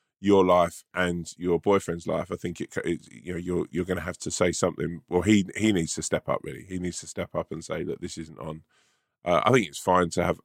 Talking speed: 265 wpm